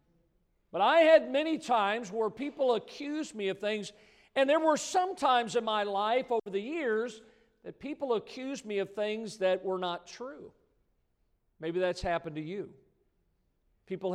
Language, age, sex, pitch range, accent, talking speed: English, 50-69, male, 195-255 Hz, American, 160 wpm